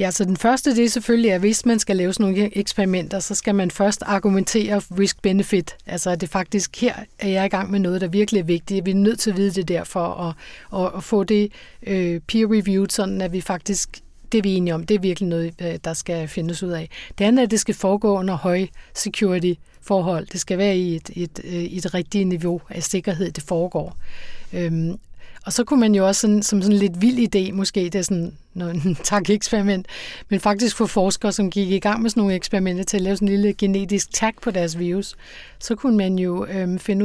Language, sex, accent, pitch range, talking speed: Danish, female, native, 185-205 Hz, 230 wpm